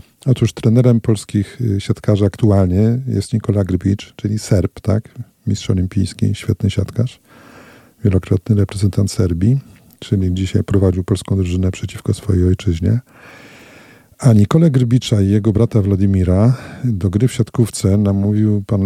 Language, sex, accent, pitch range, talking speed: Polish, male, native, 95-115 Hz, 125 wpm